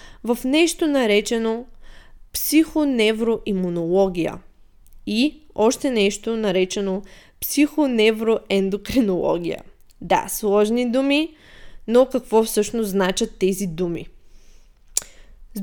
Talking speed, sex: 75 wpm, female